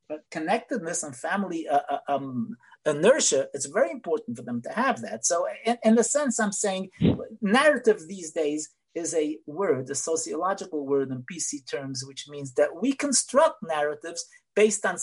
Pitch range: 165-240 Hz